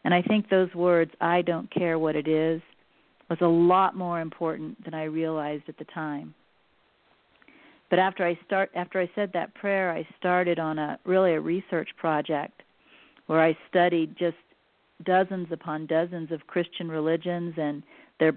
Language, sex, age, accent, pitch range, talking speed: English, female, 50-69, American, 160-185 Hz, 165 wpm